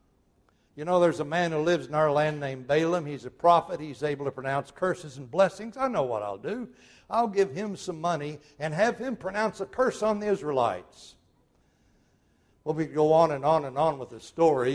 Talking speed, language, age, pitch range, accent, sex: 215 wpm, English, 60-79, 125-175 Hz, American, male